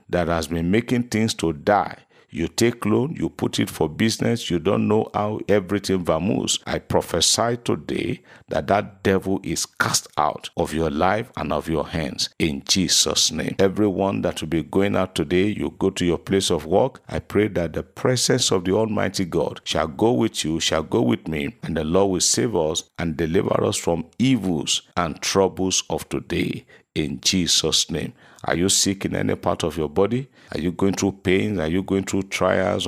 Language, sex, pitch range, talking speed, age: English, male, 85-105 Hz, 195 wpm, 50-69